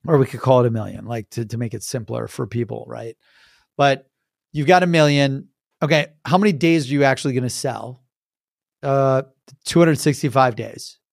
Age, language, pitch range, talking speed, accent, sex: 30-49, English, 130-155 Hz, 185 wpm, American, male